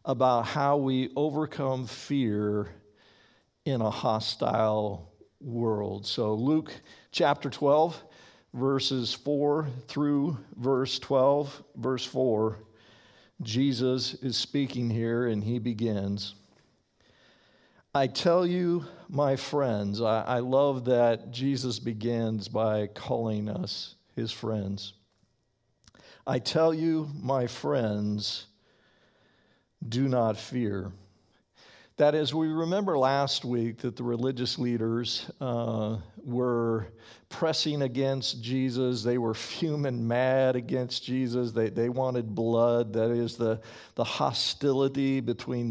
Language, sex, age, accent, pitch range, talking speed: English, male, 50-69, American, 110-135 Hz, 110 wpm